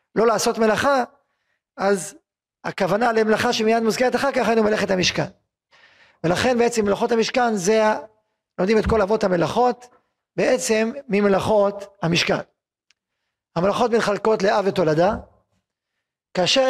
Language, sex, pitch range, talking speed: Hebrew, male, 185-230 Hz, 115 wpm